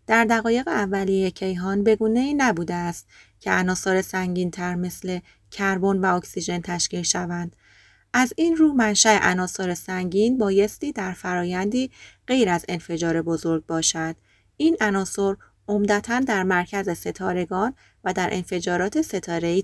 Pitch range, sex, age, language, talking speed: 175-205 Hz, female, 30-49, Persian, 130 wpm